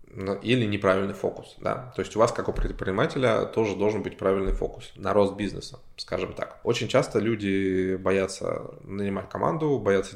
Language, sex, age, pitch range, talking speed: Russian, male, 20-39, 95-110 Hz, 165 wpm